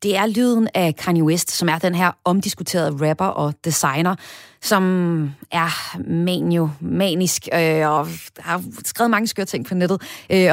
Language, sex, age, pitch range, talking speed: Danish, female, 30-49, 170-220 Hz, 160 wpm